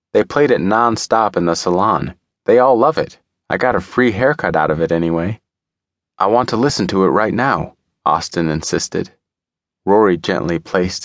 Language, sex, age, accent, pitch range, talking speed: English, male, 30-49, American, 85-105 Hz, 180 wpm